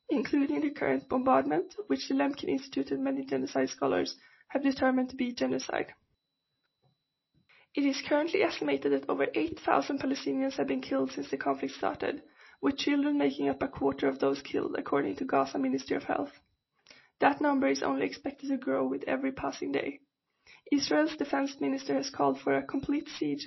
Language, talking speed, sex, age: English, 170 wpm, female, 20-39